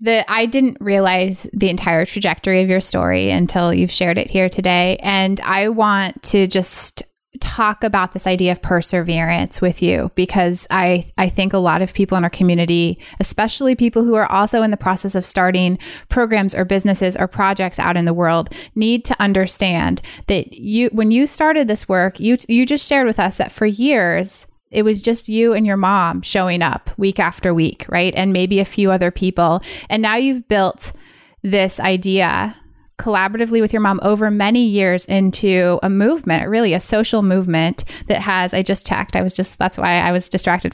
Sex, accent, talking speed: female, American, 190 wpm